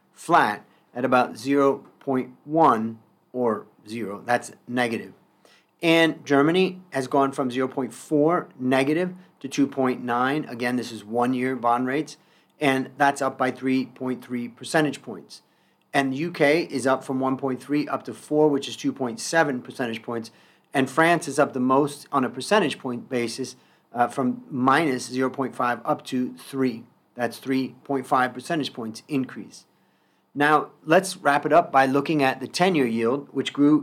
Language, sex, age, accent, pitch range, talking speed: English, male, 40-59, American, 125-150 Hz, 145 wpm